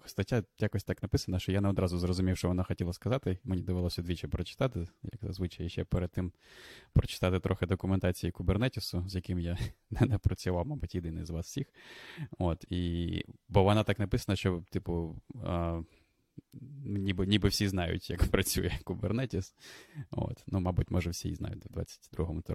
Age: 20-39